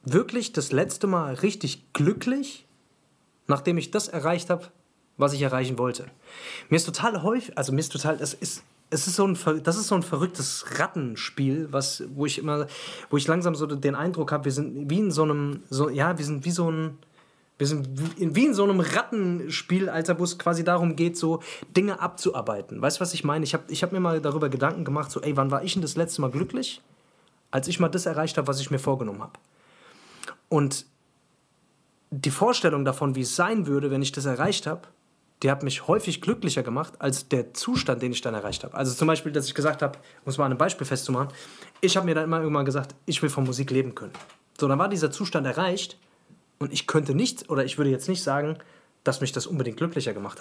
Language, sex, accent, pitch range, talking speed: German, male, German, 140-175 Hz, 220 wpm